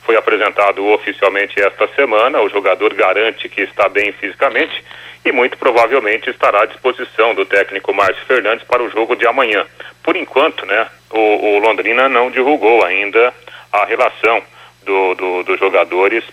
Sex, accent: male, Brazilian